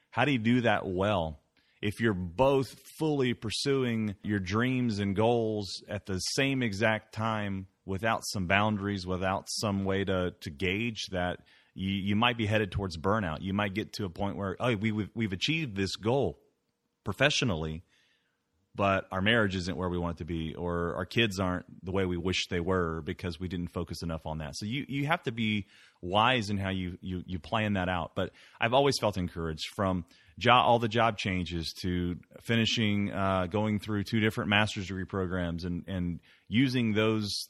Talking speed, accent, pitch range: 190 wpm, American, 90-110 Hz